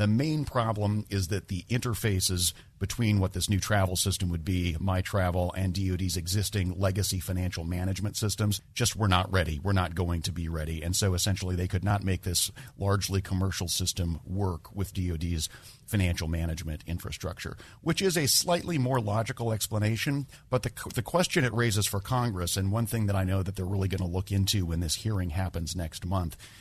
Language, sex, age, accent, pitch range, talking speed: English, male, 40-59, American, 90-110 Hz, 190 wpm